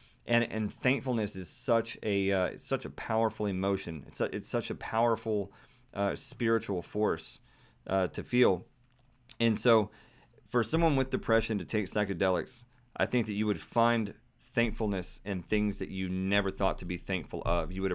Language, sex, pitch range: English, male, 100-120 Hz